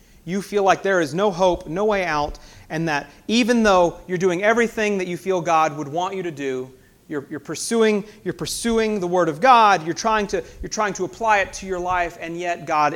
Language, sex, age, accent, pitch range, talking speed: English, male, 30-49, American, 130-185 Hz, 210 wpm